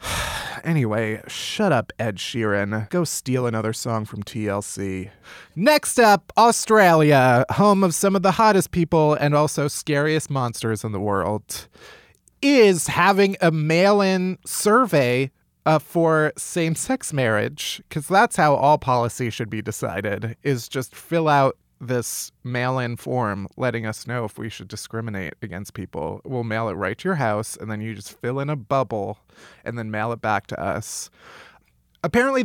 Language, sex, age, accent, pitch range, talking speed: English, male, 30-49, American, 115-160 Hz, 155 wpm